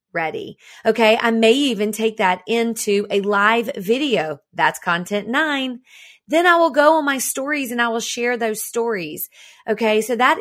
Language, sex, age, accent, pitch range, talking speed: English, female, 40-59, American, 190-250 Hz, 175 wpm